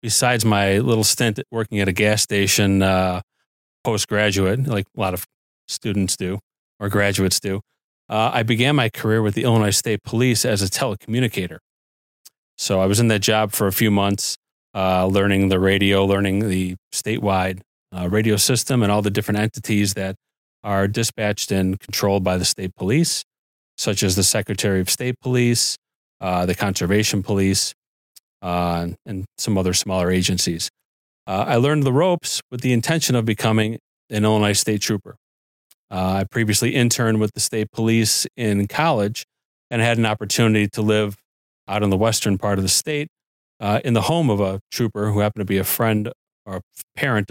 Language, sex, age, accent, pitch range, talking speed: English, male, 30-49, American, 95-115 Hz, 175 wpm